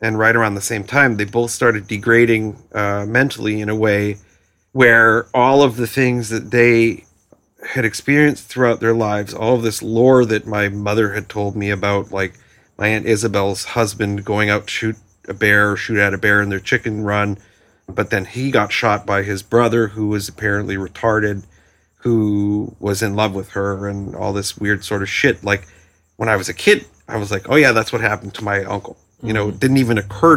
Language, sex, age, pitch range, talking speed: English, male, 40-59, 100-115 Hz, 210 wpm